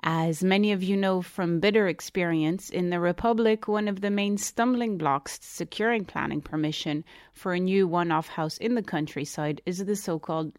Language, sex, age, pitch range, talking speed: English, female, 30-49, 155-195 Hz, 180 wpm